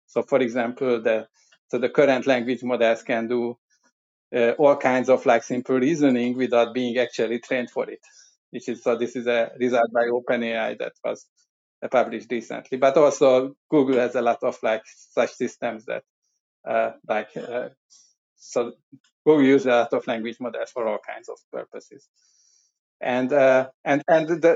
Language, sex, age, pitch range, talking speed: English, male, 50-69, 115-135 Hz, 170 wpm